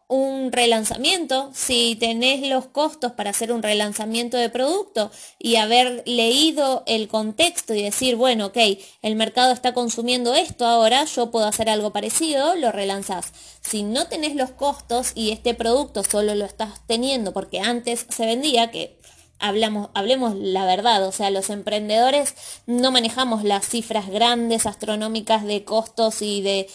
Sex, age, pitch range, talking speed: female, 20-39, 210-250 Hz, 155 wpm